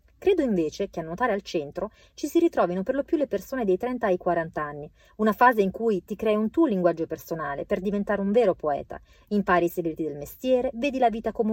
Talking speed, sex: 230 wpm, female